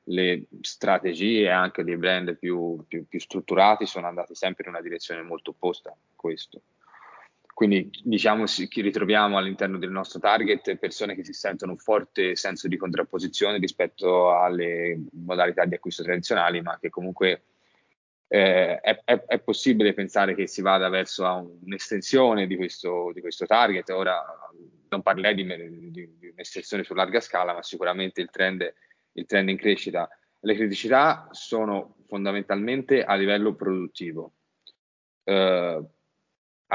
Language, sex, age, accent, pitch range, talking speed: Italian, male, 20-39, native, 90-105 Hz, 145 wpm